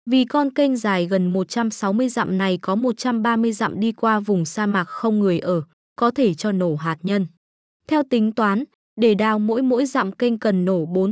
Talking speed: 200 wpm